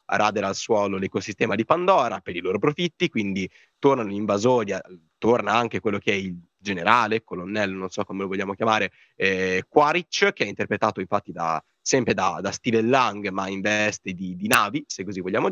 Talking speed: 195 wpm